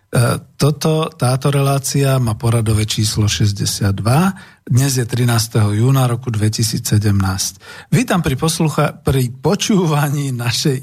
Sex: male